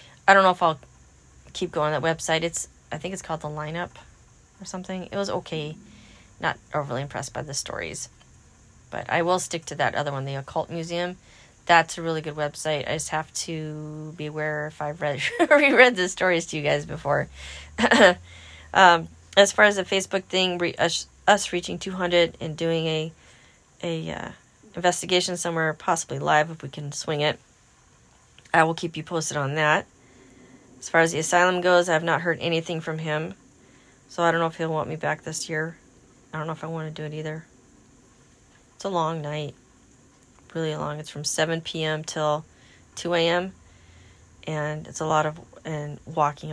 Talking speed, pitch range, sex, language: 185 wpm, 145-175 Hz, female, English